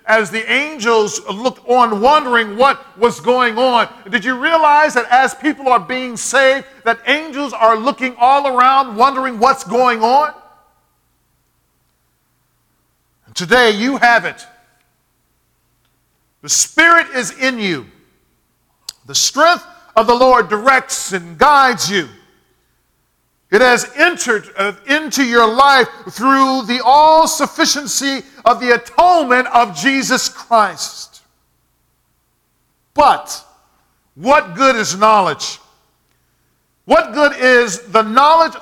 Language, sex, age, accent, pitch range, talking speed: English, male, 50-69, American, 230-280 Hz, 110 wpm